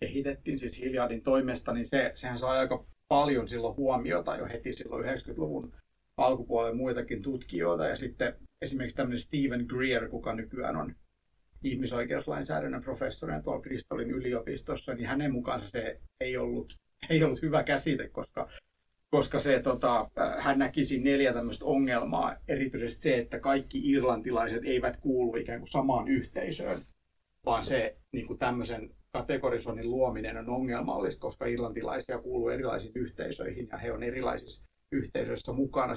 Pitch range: 120-135 Hz